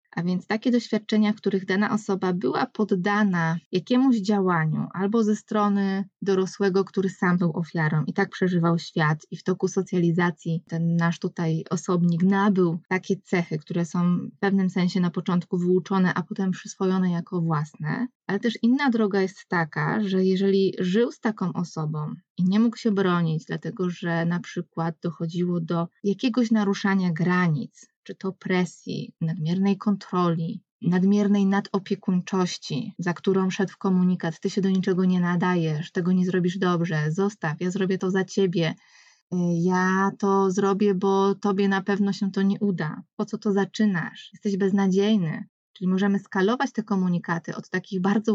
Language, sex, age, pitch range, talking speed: Polish, female, 20-39, 175-205 Hz, 155 wpm